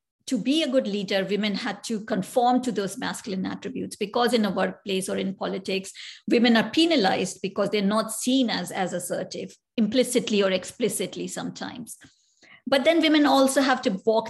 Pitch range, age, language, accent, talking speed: 195-245 Hz, 50-69, English, Indian, 170 wpm